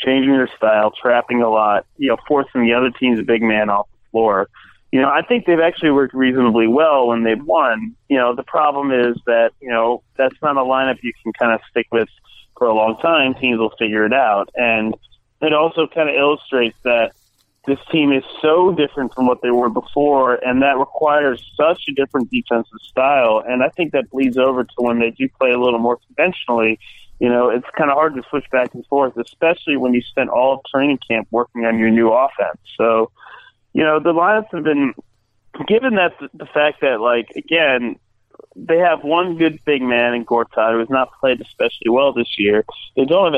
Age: 30-49